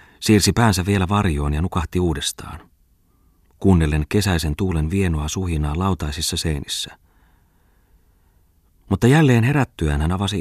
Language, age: Finnish, 30-49